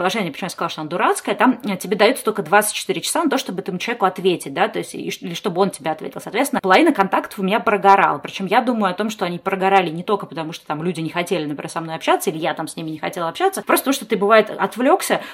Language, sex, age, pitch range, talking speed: Russian, female, 20-39, 175-220 Hz, 260 wpm